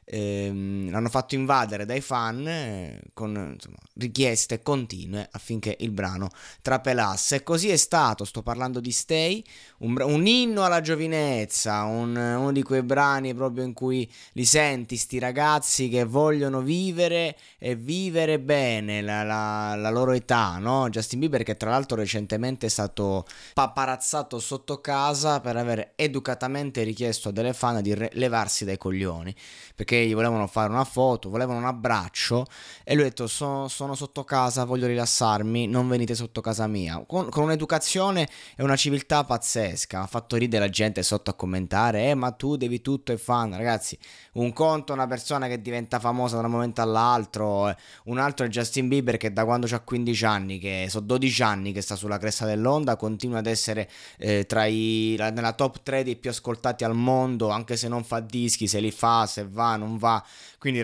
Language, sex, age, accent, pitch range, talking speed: Italian, male, 20-39, native, 110-135 Hz, 180 wpm